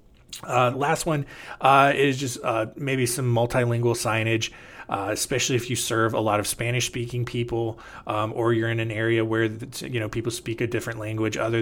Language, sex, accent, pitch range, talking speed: English, male, American, 110-135 Hz, 185 wpm